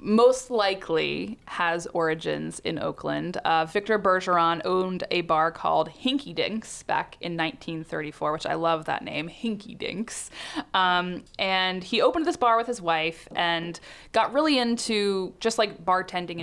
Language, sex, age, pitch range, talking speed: English, female, 20-39, 170-215 Hz, 150 wpm